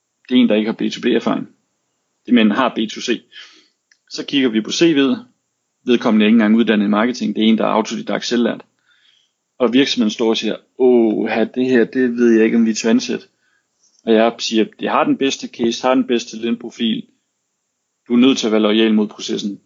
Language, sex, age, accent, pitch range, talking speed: Danish, male, 30-49, native, 110-130 Hz, 210 wpm